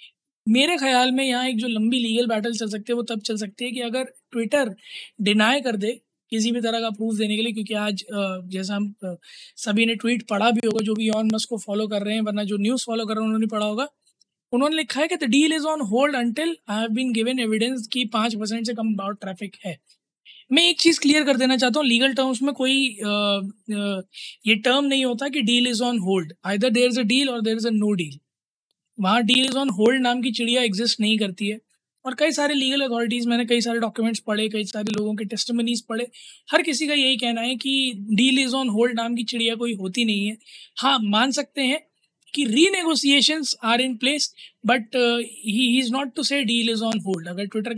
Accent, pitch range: native, 215-255 Hz